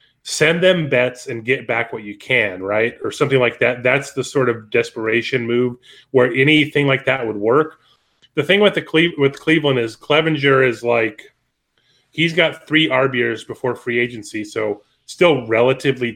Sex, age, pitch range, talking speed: male, 30-49, 120-140 Hz, 175 wpm